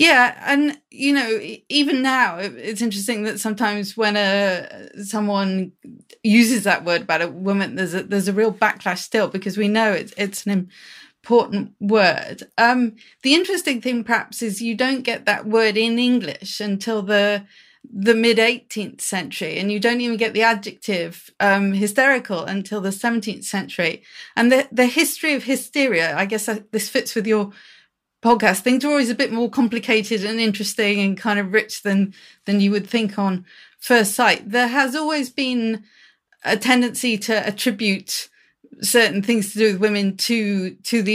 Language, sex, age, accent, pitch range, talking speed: English, female, 30-49, British, 200-240 Hz, 170 wpm